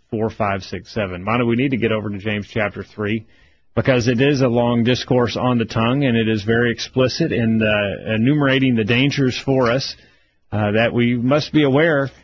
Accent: American